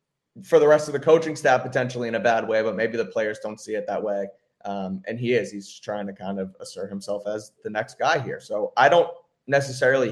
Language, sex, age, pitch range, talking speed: English, male, 30-49, 105-140 Hz, 245 wpm